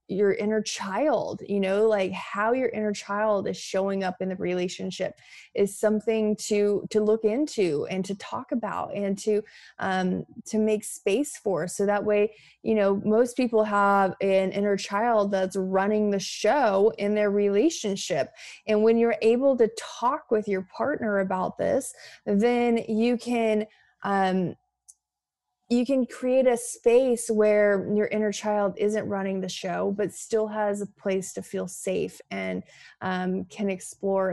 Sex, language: female, English